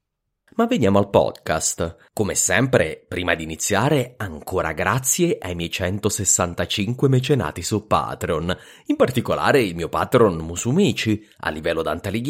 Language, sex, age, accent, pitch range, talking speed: English, male, 30-49, Italian, 85-135 Hz, 125 wpm